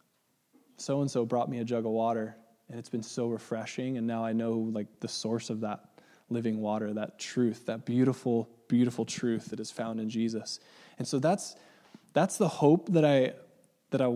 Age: 20-39